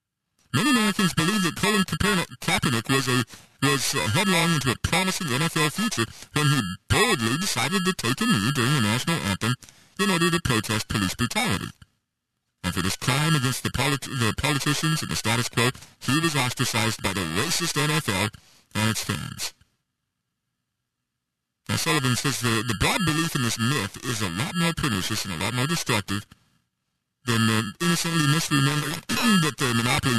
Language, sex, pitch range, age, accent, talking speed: English, male, 115-165 Hz, 50-69, American, 165 wpm